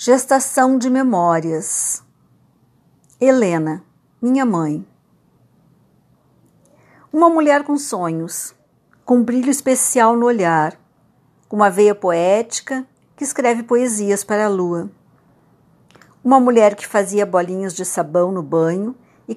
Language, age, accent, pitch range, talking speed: Portuguese, 60-79, Brazilian, 190-270 Hz, 110 wpm